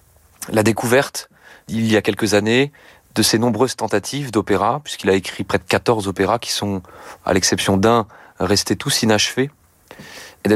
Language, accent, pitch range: French, French, 105-130 Hz